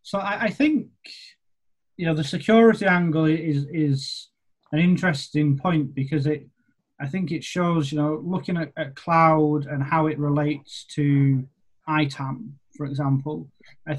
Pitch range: 140-160 Hz